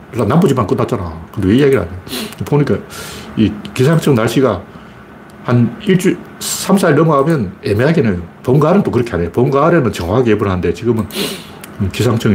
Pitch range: 95-130 Hz